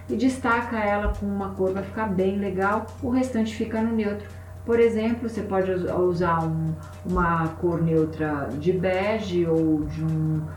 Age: 40-59